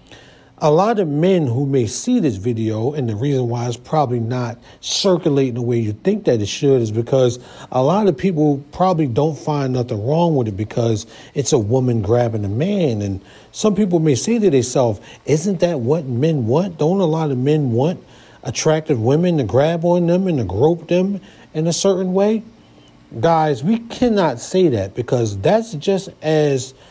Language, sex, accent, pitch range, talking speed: English, male, American, 115-170 Hz, 190 wpm